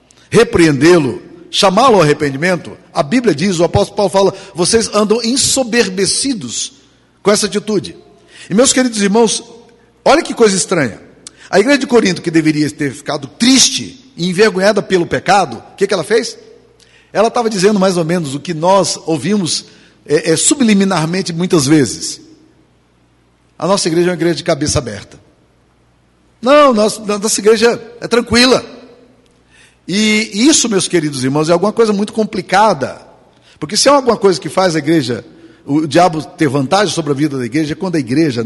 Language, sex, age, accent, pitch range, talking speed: Portuguese, male, 50-69, Brazilian, 160-235 Hz, 160 wpm